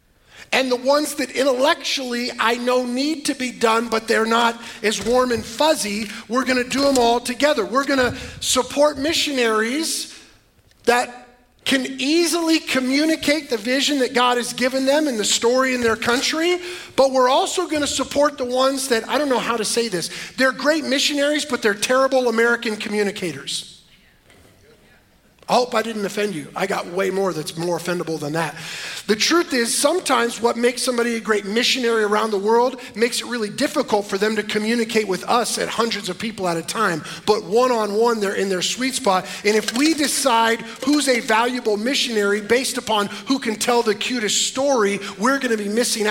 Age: 40-59